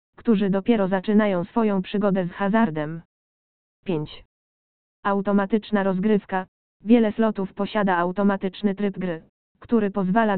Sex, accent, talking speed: female, native, 105 wpm